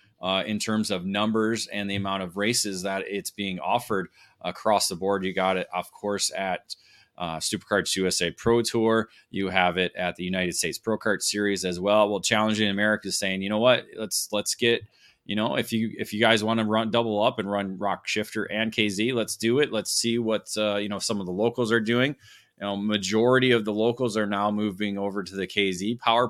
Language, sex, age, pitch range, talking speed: English, male, 20-39, 100-115 Hz, 225 wpm